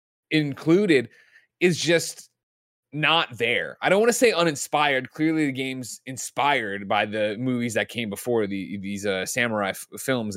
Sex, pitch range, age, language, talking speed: male, 115-165 Hz, 20-39, English, 150 wpm